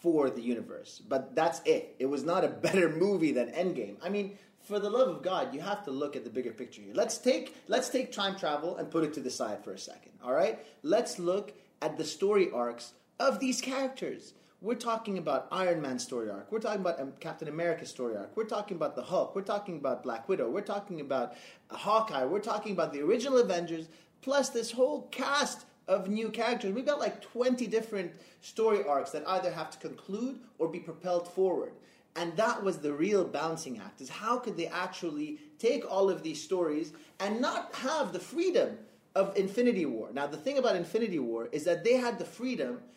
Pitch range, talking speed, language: 160-230 Hz, 210 wpm, English